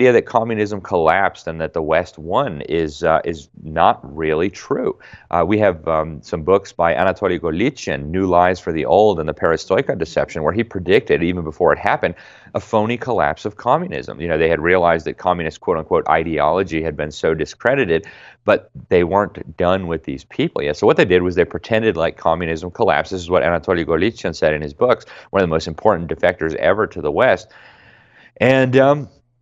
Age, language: 30-49, English